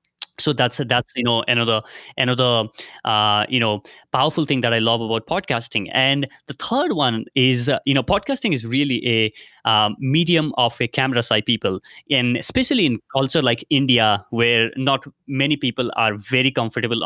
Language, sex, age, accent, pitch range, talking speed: English, male, 20-39, Indian, 115-140 Hz, 170 wpm